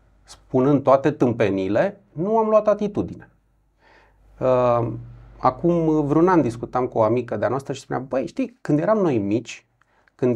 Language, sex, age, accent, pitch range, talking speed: Romanian, male, 30-49, native, 115-185 Hz, 145 wpm